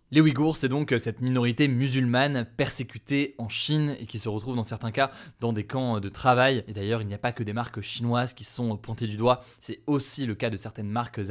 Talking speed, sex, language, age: 235 wpm, male, French, 20-39